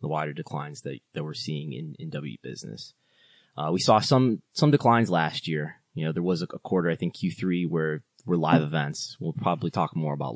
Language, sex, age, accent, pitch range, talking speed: English, male, 20-39, American, 80-100 Hz, 215 wpm